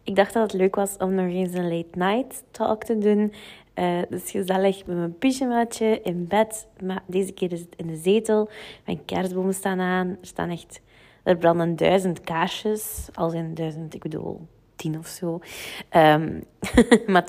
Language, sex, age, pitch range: Dutch, female, 20-39, 175-200 Hz